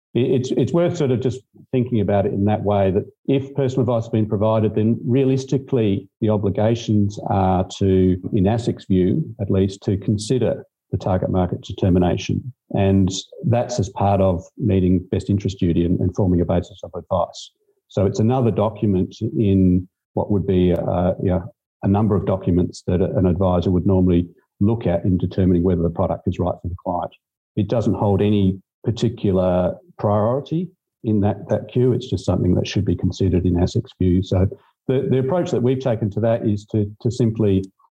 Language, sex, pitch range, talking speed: English, male, 95-115 Hz, 180 wpm